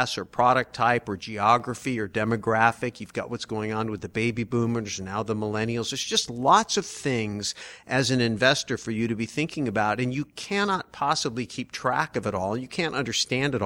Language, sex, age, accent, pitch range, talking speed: English, male, 50-69, American, 115-145 Hz, 205 wpm